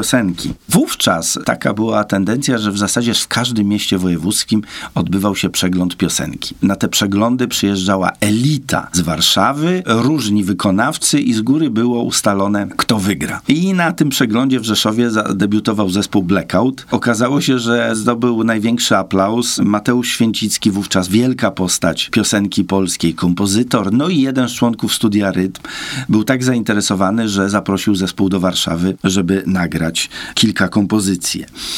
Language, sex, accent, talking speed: Polish, male, native, 140 wpm